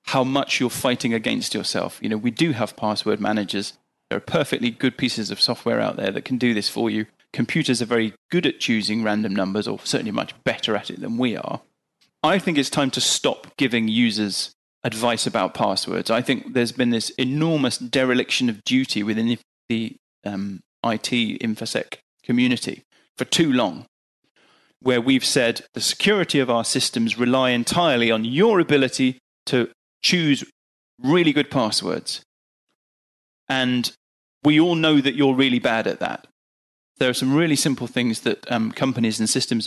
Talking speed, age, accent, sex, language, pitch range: 170 wpm, 30-49, British, male, English, 115-135 Hz